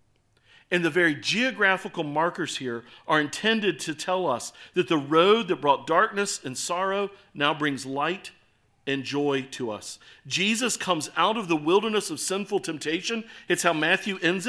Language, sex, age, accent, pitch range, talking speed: English, male, 50-69, American, 120-180 Hz, 160 wpm